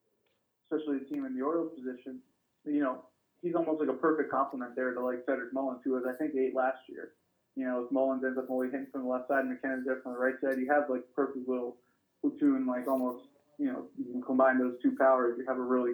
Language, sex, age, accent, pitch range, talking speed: English, male, 20-39, American, 125-145 Hz, 250 wpm